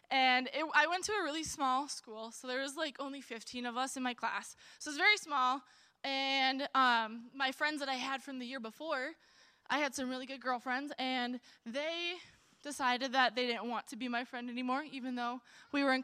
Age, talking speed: 20-39, 215 wpm